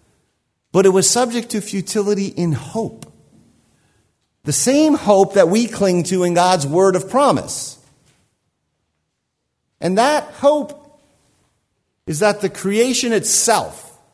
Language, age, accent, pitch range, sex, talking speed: English, 50-69, American, 130-185 Hz, male, 120 wpm